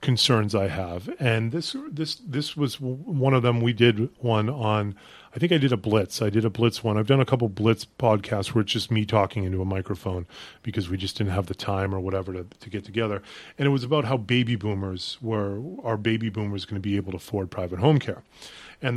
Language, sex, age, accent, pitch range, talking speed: English, male, 40-59, American, 100-120 Hz, 235 wpm